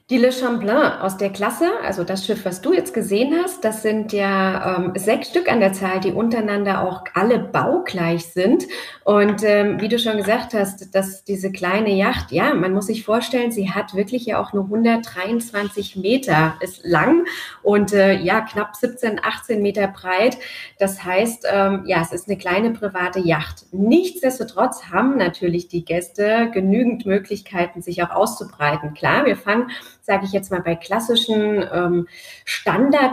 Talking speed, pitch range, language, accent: 170 wpm, 190-230 Hz, German, German